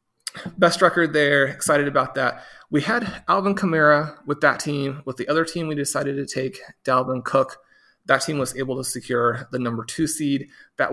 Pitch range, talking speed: 125-155 Hz, 185 wpm